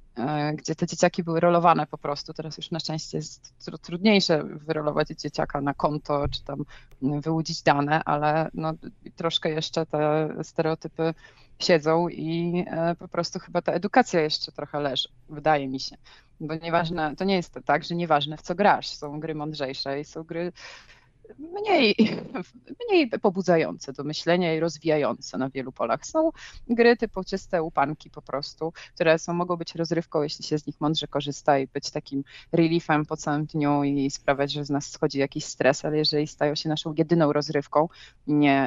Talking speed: 165 wpm